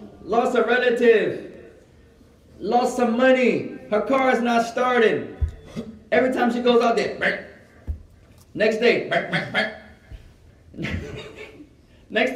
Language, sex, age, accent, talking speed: English, male, 30-49, American, 95 wpm